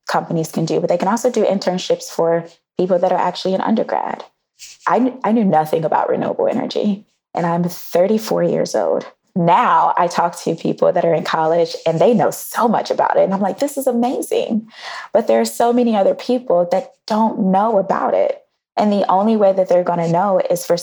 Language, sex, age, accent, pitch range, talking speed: English, female, 20-39, American, 175-235 Hz, 210 wpm